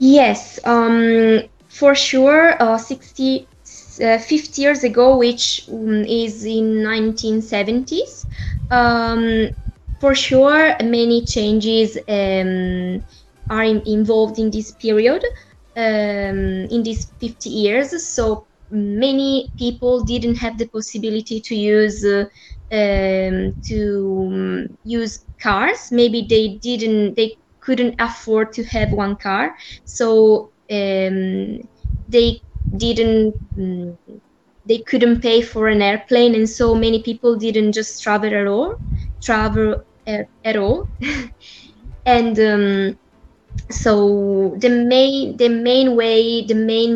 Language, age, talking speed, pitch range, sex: English, 20-39, 110 wpm, 210-235 Hz, female